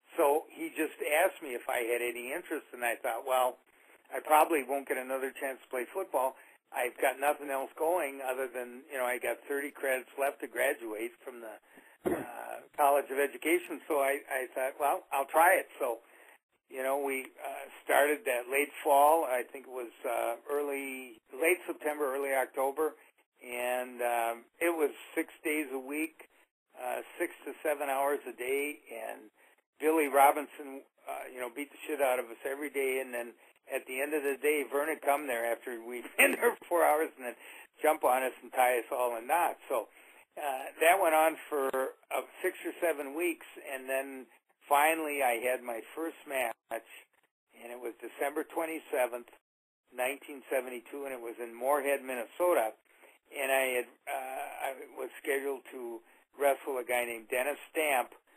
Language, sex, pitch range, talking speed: English, male, 125-145 Hz, 180 wpm